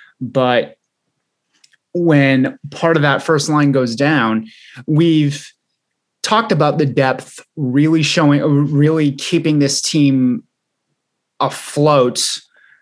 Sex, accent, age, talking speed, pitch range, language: male, American, 20-39, 100 wpm, 125-150 Hz, English